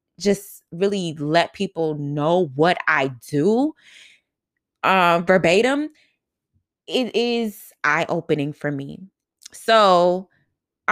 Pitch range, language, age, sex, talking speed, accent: 155-195 Hz, English, 20-39, female, 100 wpm, American